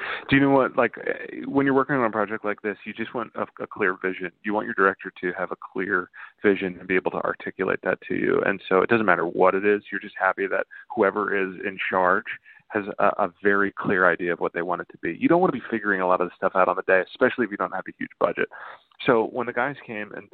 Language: English